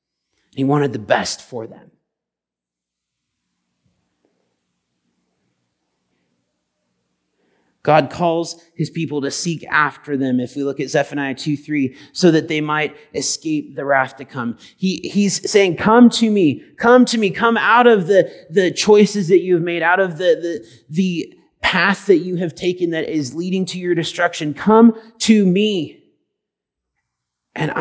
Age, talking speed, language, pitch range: 30-49, 145 wpm, English, 125-180 Hz